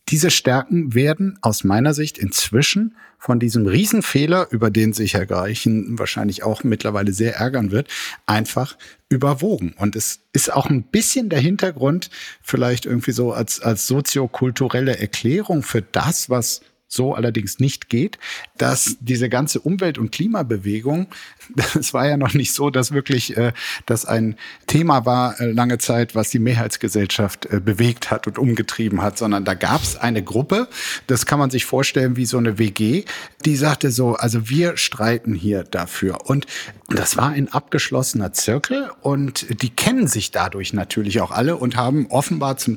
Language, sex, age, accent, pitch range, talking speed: German, male, 50-69, German, 110-145 Hz, 165 wpm